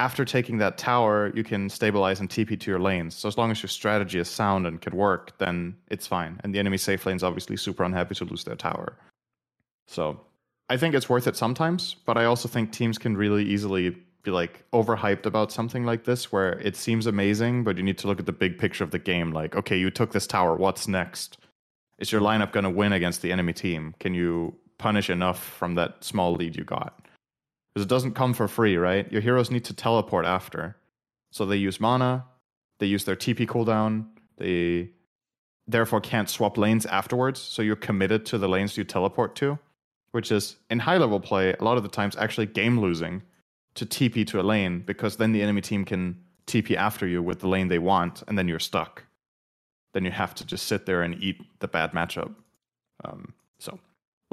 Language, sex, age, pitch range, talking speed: English, male, 30-49, 90-115 Hz, 210 wpm